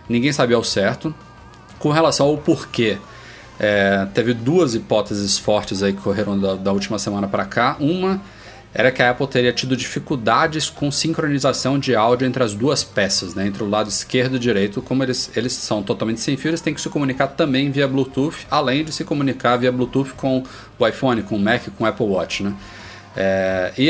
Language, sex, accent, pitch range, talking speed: Portuguese, male, Brazilian, 105-135 Hz, 200 wpm